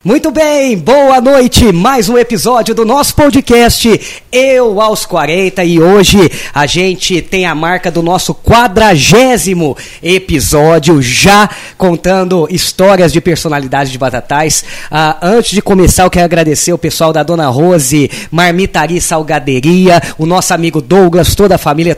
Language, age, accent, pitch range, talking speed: Portuguese, 20-39, Brazilian, 160-195 Hz, 140 wpm